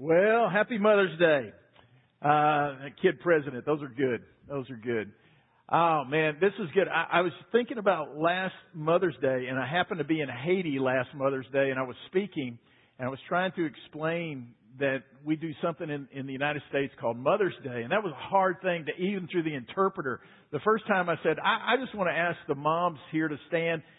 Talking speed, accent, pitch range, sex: 215 wpm, American, 135-175 Hz, male